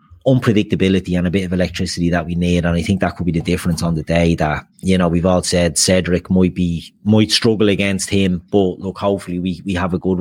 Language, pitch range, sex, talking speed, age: English, 85-100 Hz, male, 240 wpm, 30-49